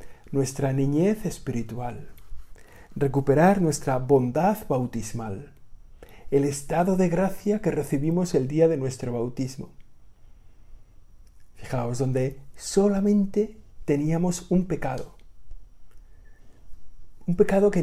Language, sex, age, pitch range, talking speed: Spanish, male, 50-69, 115-150 Hz, 90 wpm